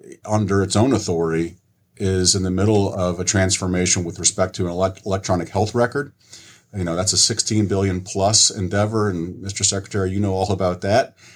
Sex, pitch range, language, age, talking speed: male, 90-105 Hz, English, 40-59, 180 wpm